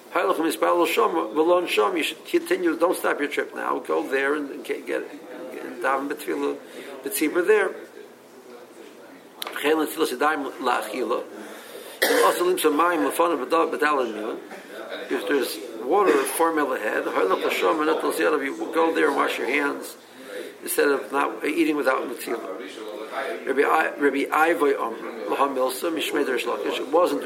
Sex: male